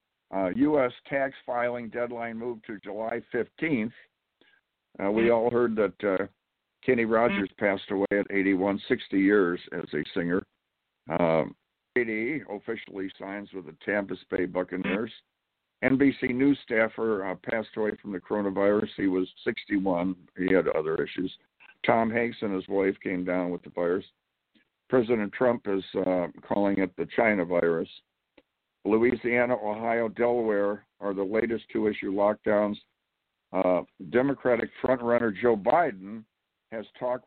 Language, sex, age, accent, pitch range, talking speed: English, male, 60-79, American, 100-120 Hz, 135 wpm